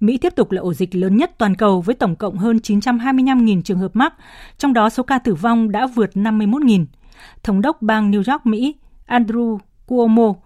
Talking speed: 200 wpm